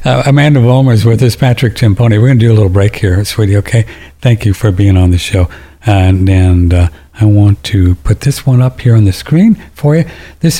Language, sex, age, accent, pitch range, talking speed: English, male, 60-79, American, 90-115 Hz, 240 wpm